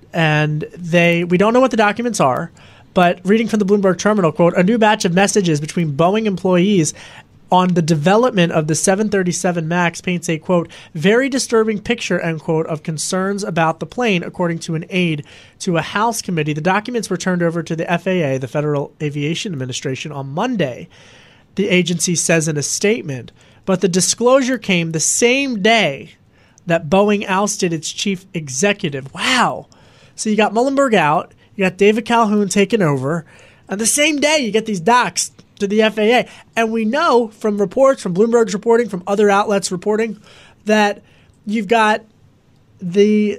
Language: English